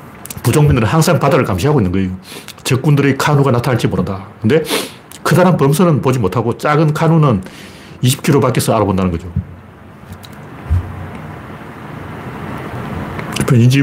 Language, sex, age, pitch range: Korean, male, 40-59, 110-150 Hz